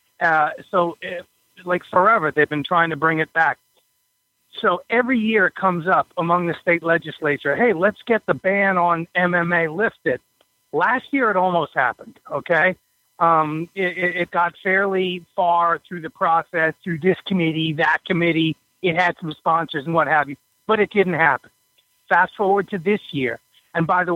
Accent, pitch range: American, 155-185 Hz